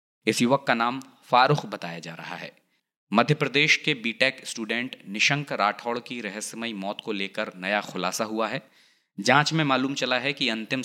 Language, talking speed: Hindi, 175 wpm